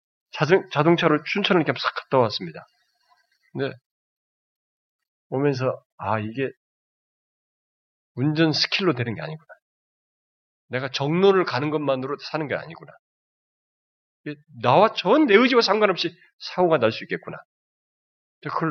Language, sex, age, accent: Korean, male, 40-59, native